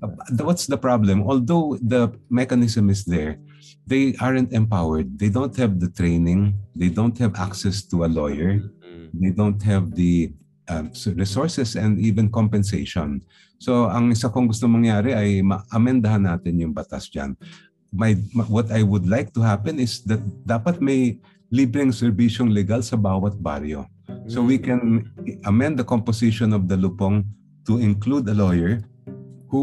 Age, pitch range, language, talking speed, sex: 50-69, 95-125 Hz, Filipino, 150 wpm, male